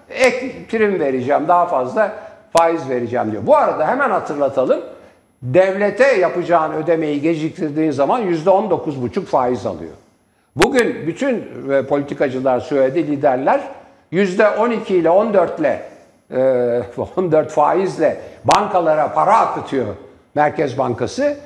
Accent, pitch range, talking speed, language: native, 150-215 Hz, 105 wpm, Turkish